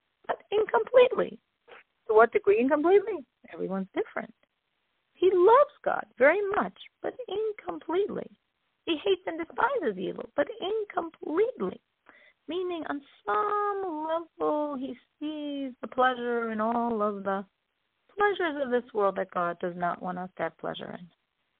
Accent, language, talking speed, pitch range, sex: American, English, 135 wpm, 225-370 Hz, female